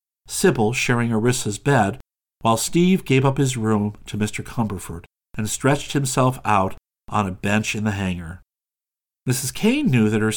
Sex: male